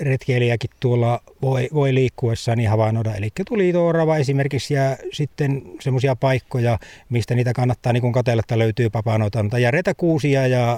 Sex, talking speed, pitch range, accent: male, 145 wpm, 115-135 Hz, native